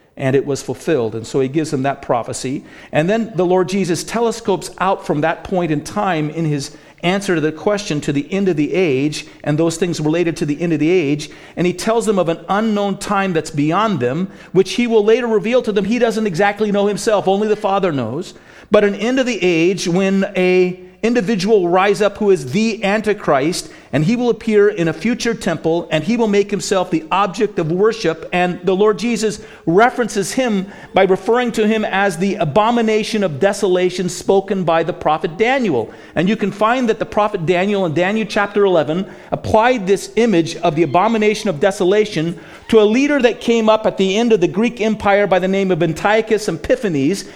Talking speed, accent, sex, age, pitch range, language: 205 wpm, American, male, 50-69, 175-215 Hz, English